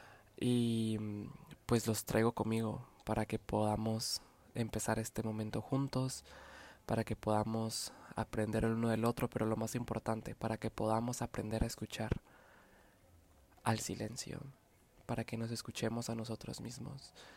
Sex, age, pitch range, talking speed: male, 20-39, 110-130 Hz, 135 wpm